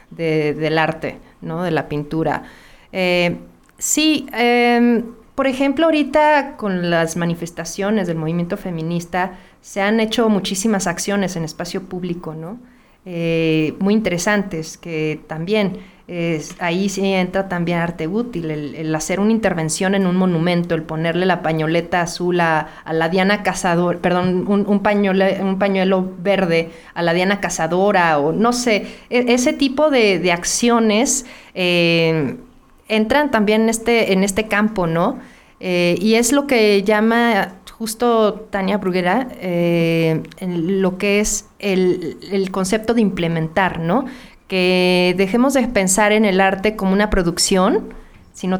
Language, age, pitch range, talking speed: Spanish, 40-59, 170-220 Hz, 145 wpm